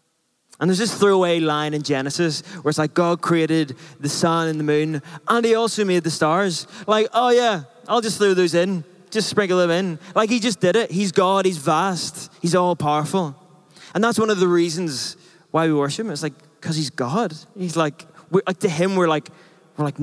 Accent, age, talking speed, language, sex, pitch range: British, 20-39, 210 wpm, English, male, 145-175 Hz